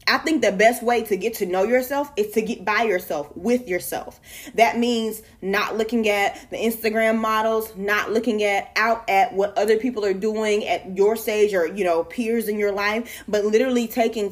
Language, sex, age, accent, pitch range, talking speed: English, female, 20-39, American, 205-245 Hz, 200 wpm